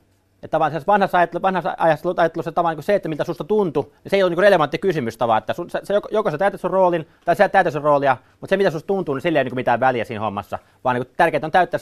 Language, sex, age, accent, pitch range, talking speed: Finnish, male, 30-49, native, 140-190 Hz, 225 wpm